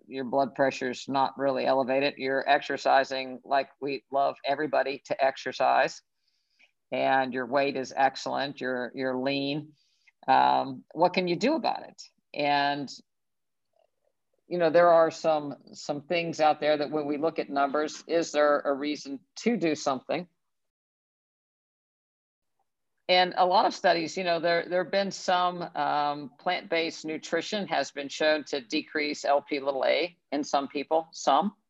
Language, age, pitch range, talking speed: English, 50-69, 135-160 Hz, 150 wpm